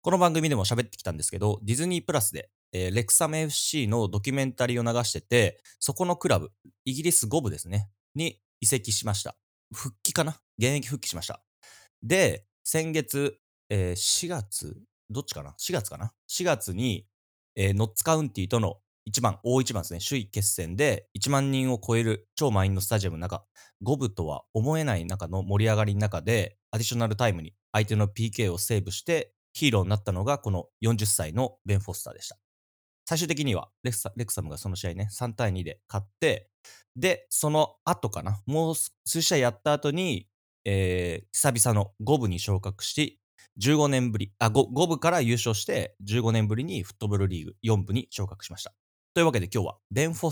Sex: male